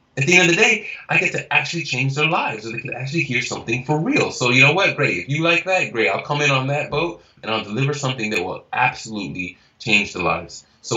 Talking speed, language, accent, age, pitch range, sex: 265 wpm, English, American, 20-39, 100-135 Hz, male